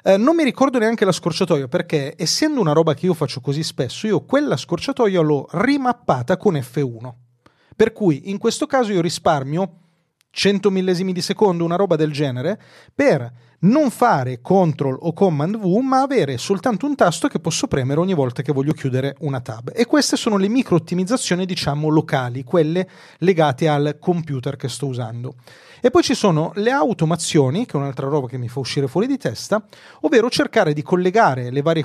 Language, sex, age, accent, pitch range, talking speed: Italian, male, 30-49, native, 140-195 Hz, 185 wpm